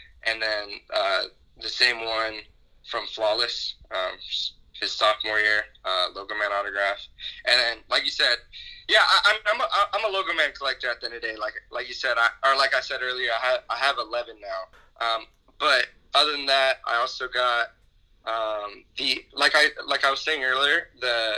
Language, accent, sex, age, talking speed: English, American, male, 20-39, 195 wpm